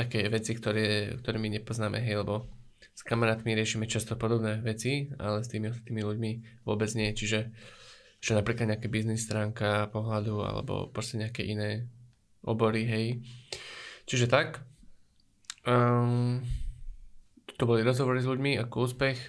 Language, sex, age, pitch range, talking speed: Slovak, male, 20-39, 110-125 Hz, 135 wpm